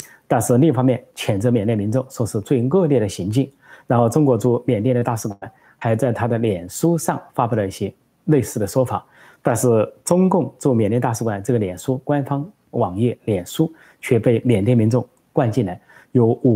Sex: male